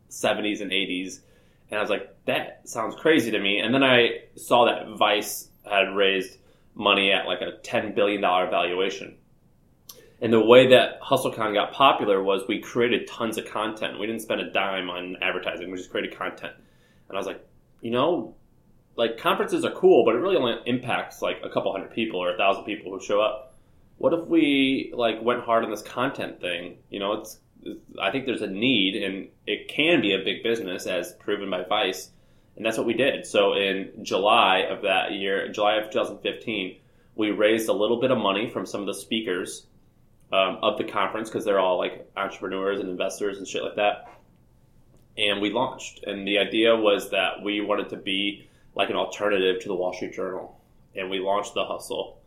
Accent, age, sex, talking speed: American, 20-39, male, 200 wpm